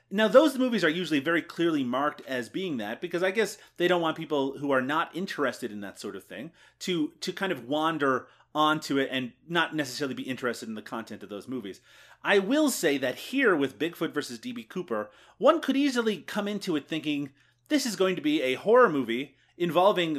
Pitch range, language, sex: 130-185 Hz, English, male